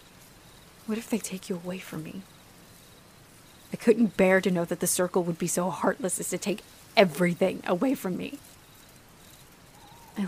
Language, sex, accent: English, female, American